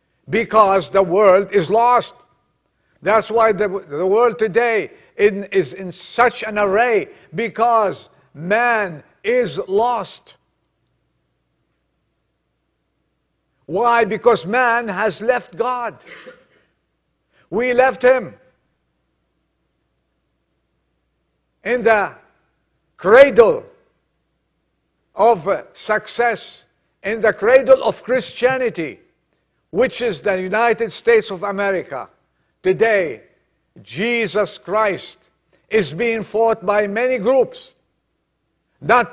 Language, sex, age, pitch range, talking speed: English, male, 50-69, 200-245 Hz, 85 wpm